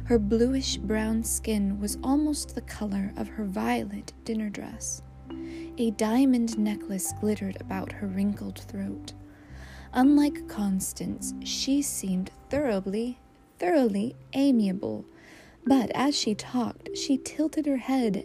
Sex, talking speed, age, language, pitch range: female, 115 wpm, 20-39, English, 185-250 Hz